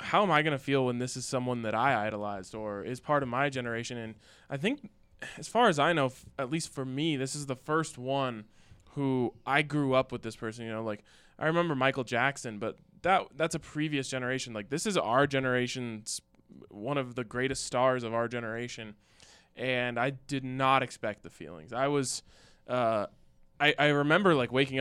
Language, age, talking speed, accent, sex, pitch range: English, 20-39, 205 wpm, American, male, 115-135 Hz